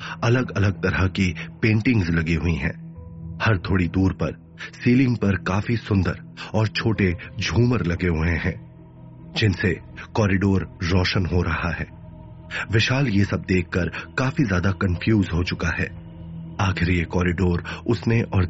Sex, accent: male, native